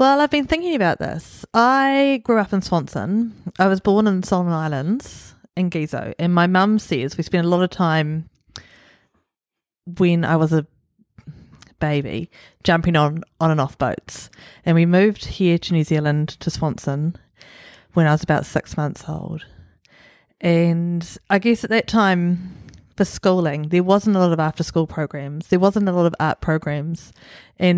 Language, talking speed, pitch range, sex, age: English, 170 wpm, 155-185 Hz, female, 30-49